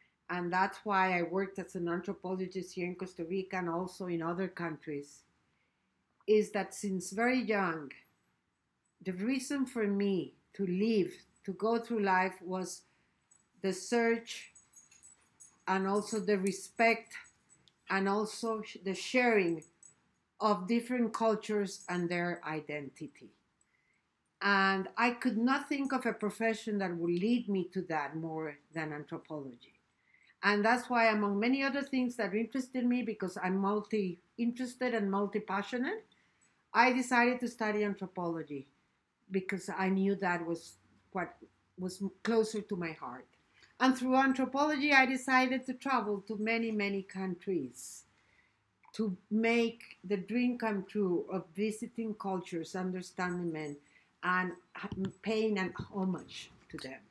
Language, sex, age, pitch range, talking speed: English, female, 50-69, 180-225 Hz, 130 wpm